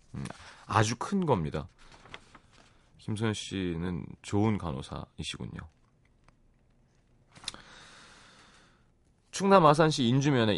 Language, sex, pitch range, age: Korean, male, 90-135 Hz, 30-49